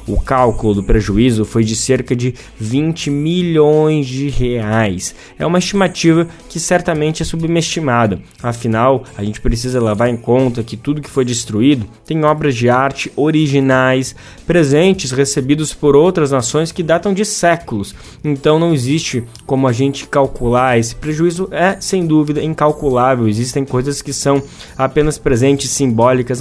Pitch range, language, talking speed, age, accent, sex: 120-150 Hz, Portuguese, 150 wpm, 20-39, Brazilian, male